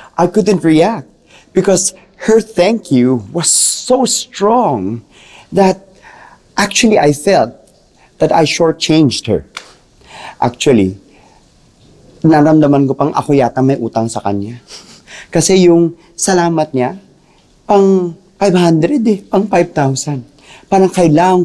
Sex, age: male, 30-49